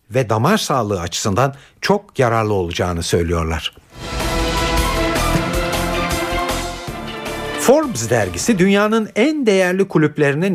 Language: Turkish